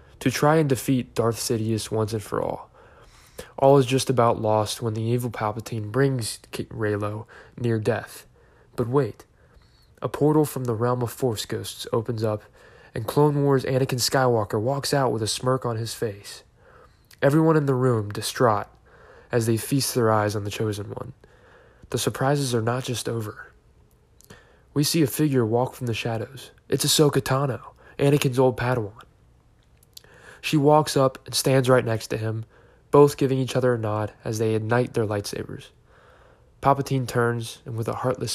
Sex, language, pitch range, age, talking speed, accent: male, English, 110-130 Hz, 20-39, 170 wpm, American